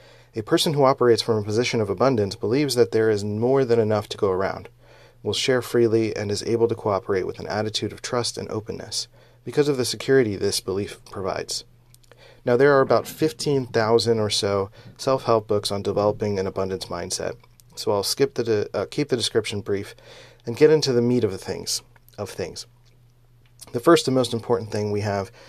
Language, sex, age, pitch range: English, male, 30-49, 105-120 Hz